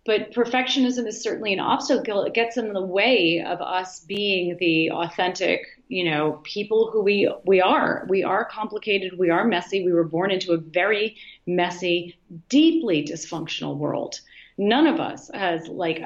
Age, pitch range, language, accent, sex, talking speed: 30-49, 170-215 Hz, English, American, female, 165 wpm